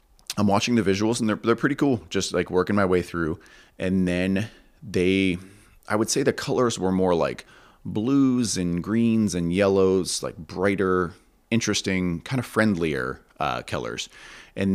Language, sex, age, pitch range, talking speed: English, male, 30-49, 80-100 Hz, 165 wpm